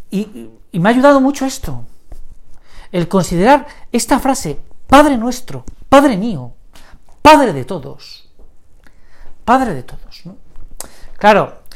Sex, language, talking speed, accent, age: male, Spanish, 110 wpm, Spanish, 40-59